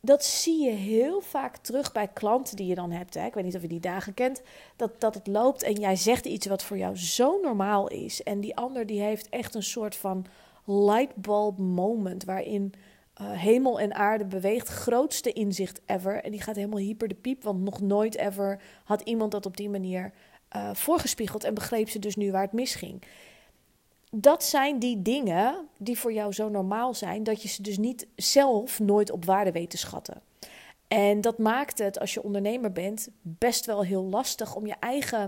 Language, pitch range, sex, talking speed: Dutch, 195-235 Hz, female, 200 wpm